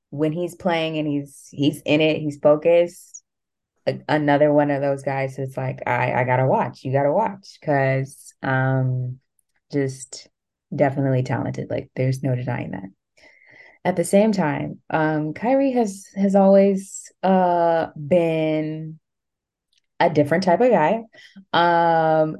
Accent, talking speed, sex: American, 135 wpm, female